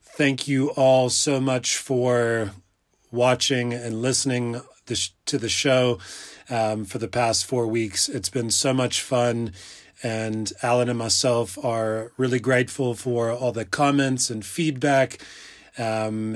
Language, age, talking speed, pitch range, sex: English, 30-49, 135 wpm, 115-135 Hz, male